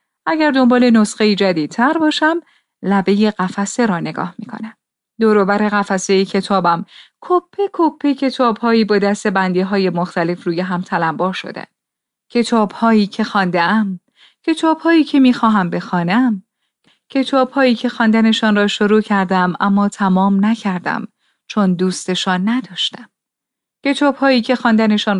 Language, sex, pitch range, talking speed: Persian, female, 190-245 Hz, 130 wpm